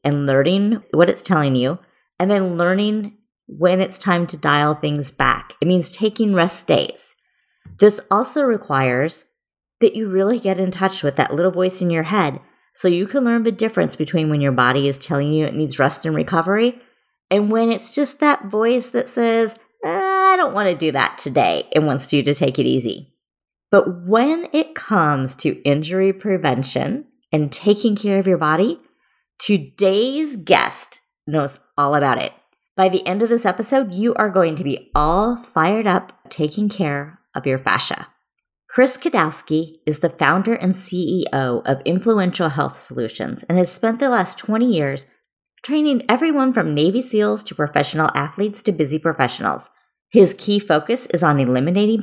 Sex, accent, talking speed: female, American, 175 wpm